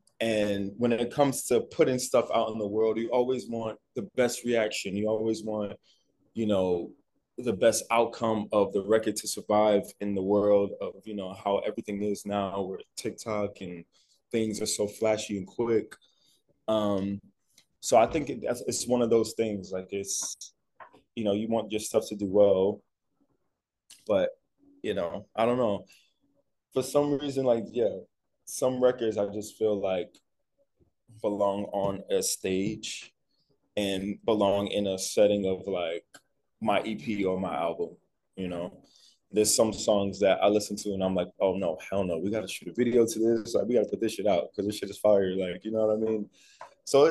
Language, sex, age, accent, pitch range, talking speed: English, male, 20-39, American, 100-120 Hz, 185 wpm